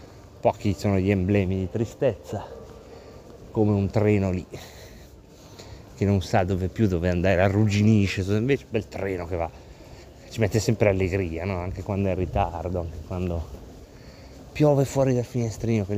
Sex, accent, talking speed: male, native, 145 wpm